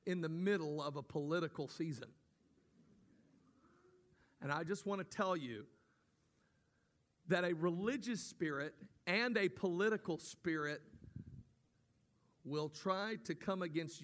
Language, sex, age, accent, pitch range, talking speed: English, male, 50-69, American, 125-170 Hz, 115 wpm